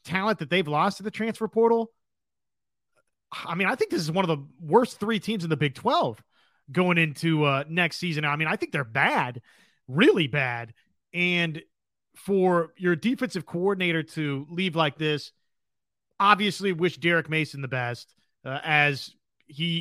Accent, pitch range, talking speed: American, 150-195 Hz, 165 wpm